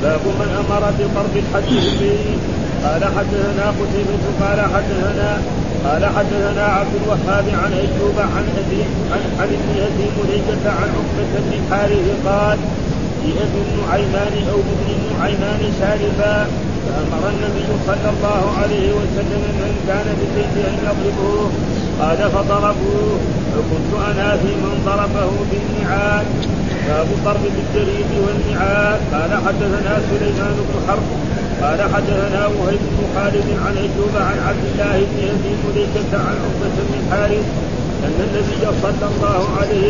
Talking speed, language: 110 wpm, Arabic